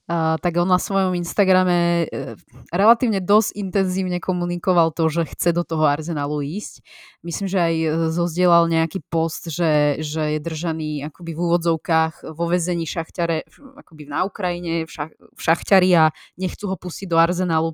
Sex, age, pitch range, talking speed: female, 20-39, 165-185 Hz, 150 wpm